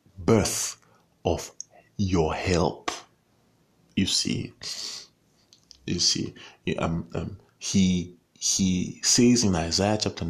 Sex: male